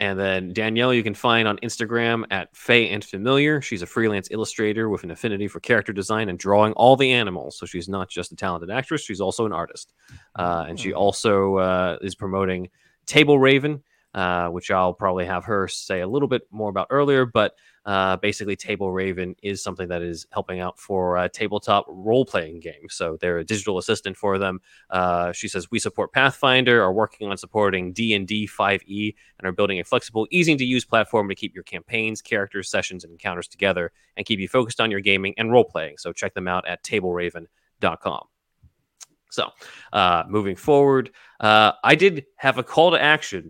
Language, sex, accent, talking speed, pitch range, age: English, male, American, 190 wpm, 95-115 Hz, 20-39